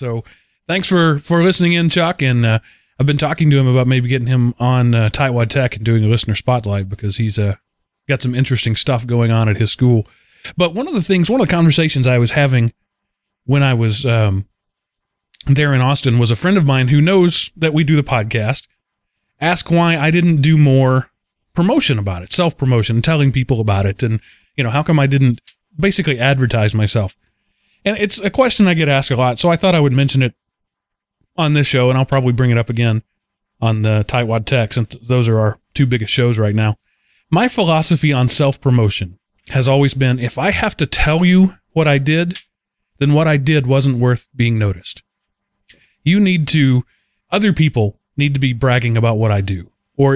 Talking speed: 205 wpm